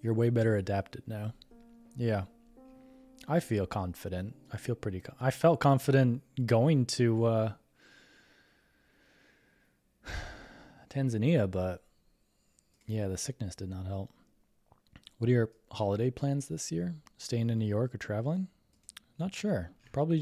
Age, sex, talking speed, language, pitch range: 20-39, male, 130 wpm, English, 100-130 Hz